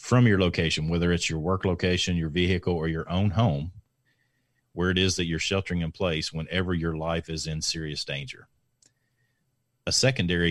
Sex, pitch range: male, 85-100 Hz